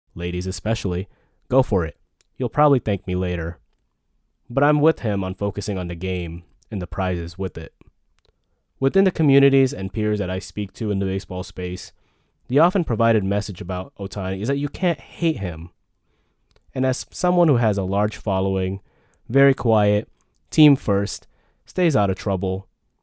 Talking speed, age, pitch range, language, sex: 170 wpm, 20-39, 90-115 Hz, English, male